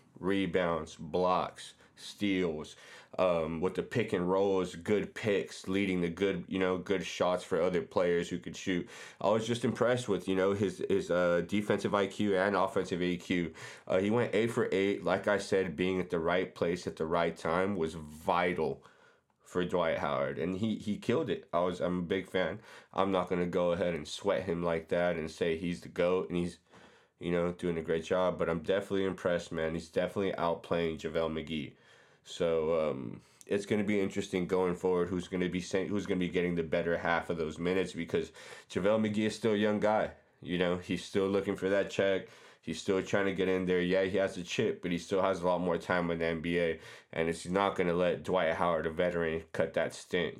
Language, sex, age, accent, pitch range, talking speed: English, male, 30-49, American, 85-95 Hz, 215 wpm